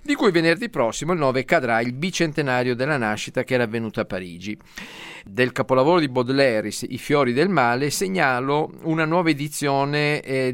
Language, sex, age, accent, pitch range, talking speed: Italian, male, 40-59, native, 115-150 Hz, 165 wpm